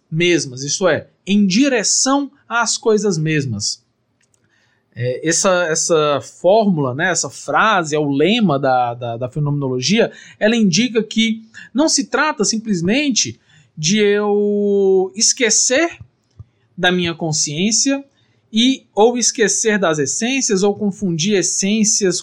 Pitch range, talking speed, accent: 160-230 Hz, 115 wpm, Brazilian